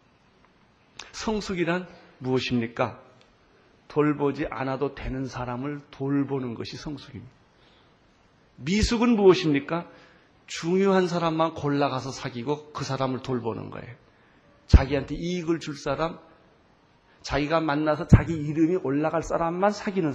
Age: 40-59